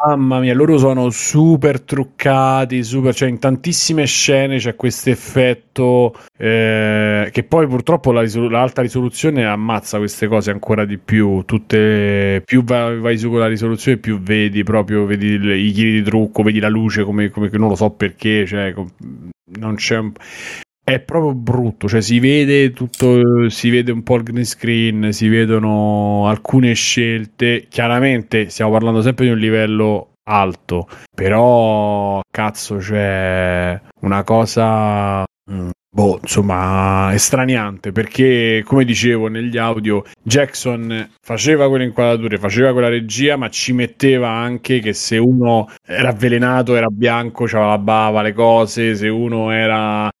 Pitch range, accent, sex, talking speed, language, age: 105-125 Hz, native, male, 150 wpm, Italian, 30-49